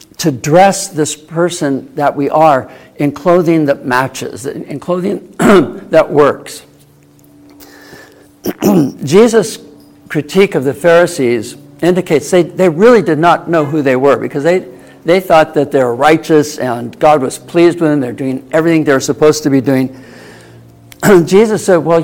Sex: male